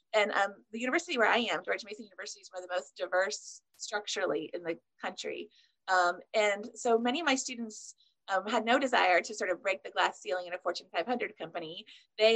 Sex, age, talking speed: female, 30-49, 215 wpm